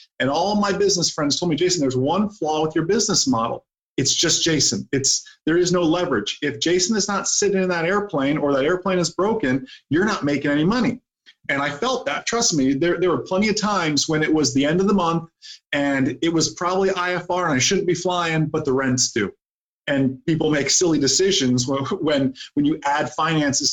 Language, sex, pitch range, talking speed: English, male, 140-180 Hz, 220 wpm